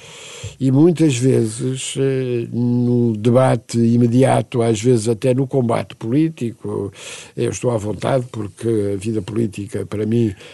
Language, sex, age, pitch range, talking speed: Portuguese, male, 60-79, 120-205 Hz, 125 wpm